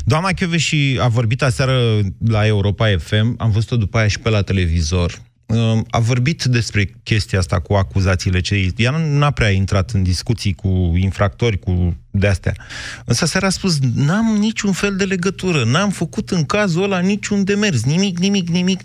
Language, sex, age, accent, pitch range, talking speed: Romanian, male, 30-49, native, 100-140 Hz, 175 wpm